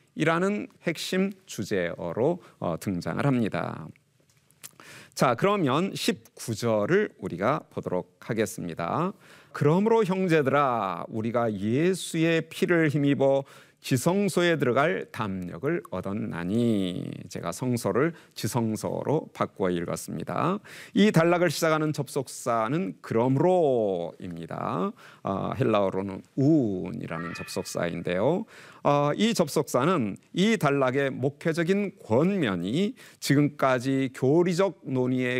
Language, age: Korean, 40-59